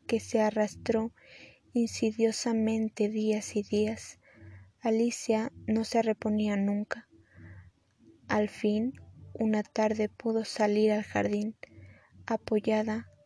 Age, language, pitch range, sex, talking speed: 20-39, Spanish, 185-225 Hz, female, 95 wpm